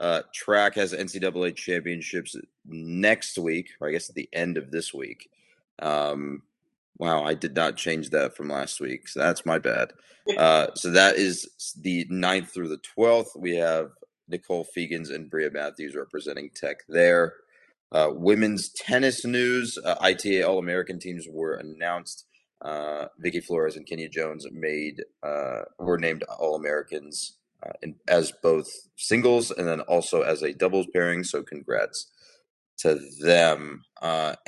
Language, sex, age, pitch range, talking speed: English, male, 30-49, 80-105 Hz, 150 wpm